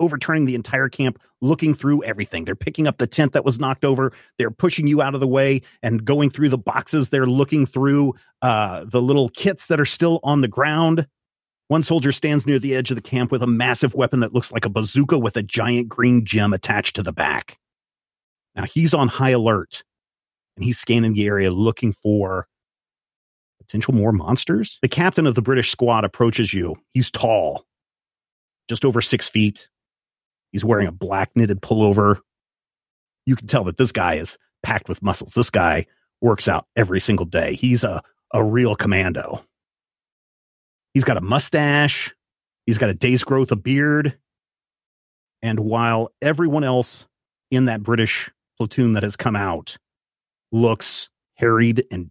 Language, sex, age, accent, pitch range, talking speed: English, male, 30-49, American, 105-135 Hz, 175 wpm